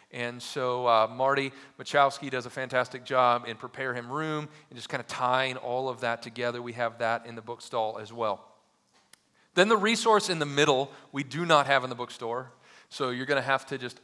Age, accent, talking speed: 40-59, American, 215 wpm